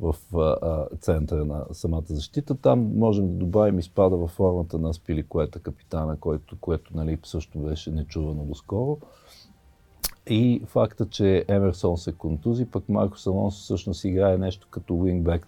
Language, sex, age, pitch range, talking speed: Bulgarian, male, 50-69, 85-115 Hz, 145 wpm